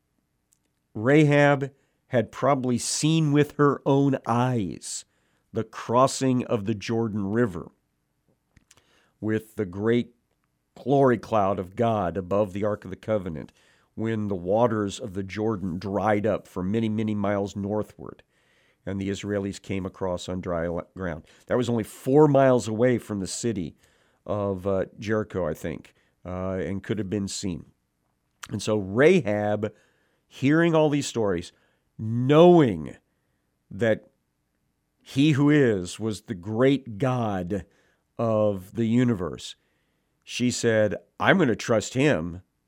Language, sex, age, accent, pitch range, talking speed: English, male, 50-69, American, 100-125 Hz, 130 wpm